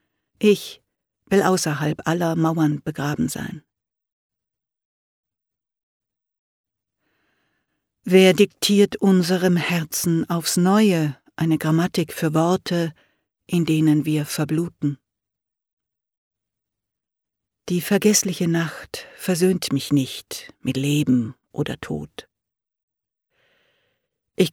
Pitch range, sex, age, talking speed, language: 155-180 Hz, female, 60-79, 80 wpm, German